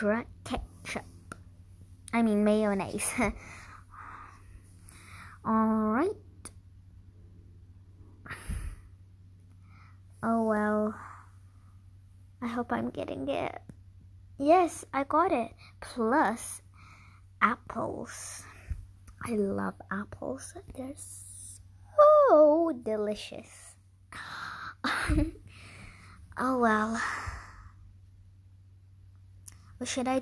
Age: 20-39